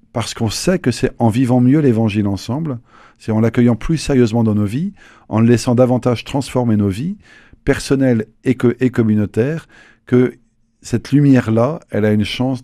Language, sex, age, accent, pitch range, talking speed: French, male, 50-69, French, 105-125 Hz, 175 wpm